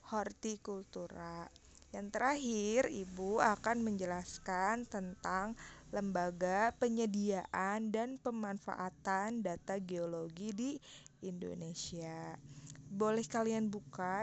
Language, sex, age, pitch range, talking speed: Indonesian, female, 20-39, 180-220 Hz, 75 wpm